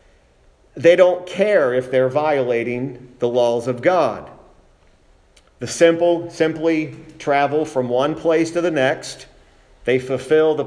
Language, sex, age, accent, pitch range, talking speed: English, male, 50-69, American, 130-160 Hz, 130 wpm